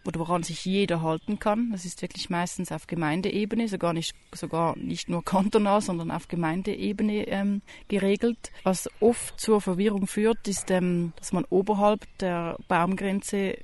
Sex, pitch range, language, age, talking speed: female, 170-205 Hz, German, 30-49, 155 wpm